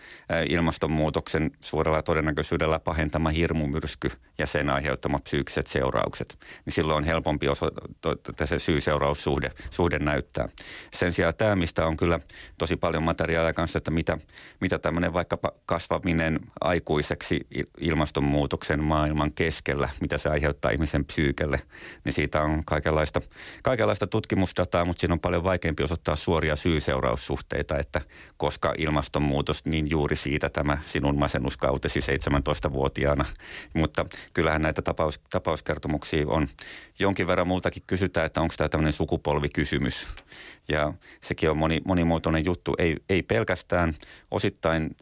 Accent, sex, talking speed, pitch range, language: native, male, 125 wpm, 75-85 Hz, Finnish